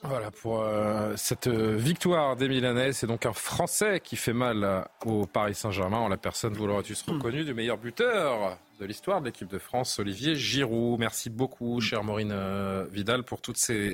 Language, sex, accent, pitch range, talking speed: French, male, French, 115-155 Hz, 180 wpm